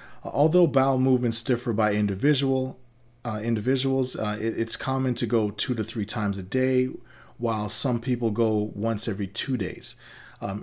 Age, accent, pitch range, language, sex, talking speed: 40-59, American, 105-125 Hz, English, male, 165 wpm